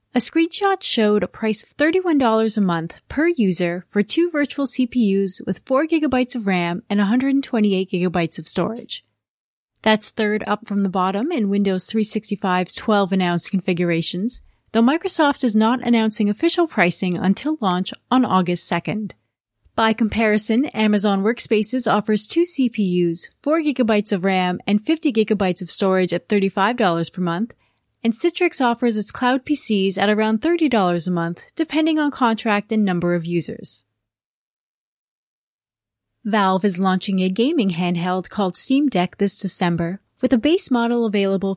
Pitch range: 185-245 Hz